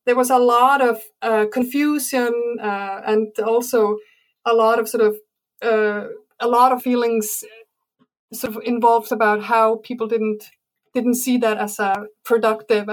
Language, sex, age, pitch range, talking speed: English, female, 30-49, 210-235 Hz, 160 wpm